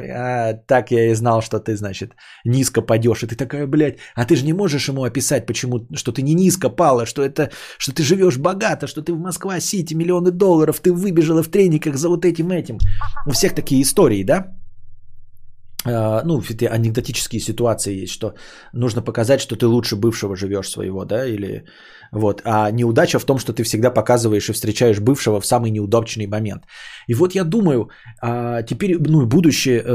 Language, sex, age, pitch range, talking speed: Bulgarian, male, 20-39, 120-175 Hz, 185 wpm